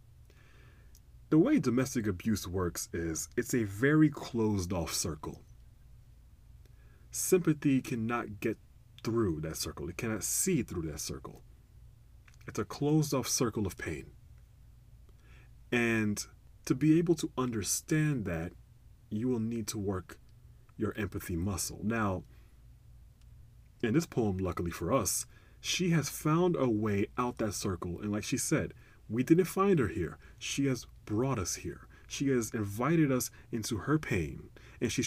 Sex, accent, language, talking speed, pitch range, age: male, American, English, 145 wpm, 105-130 Hz, 30-49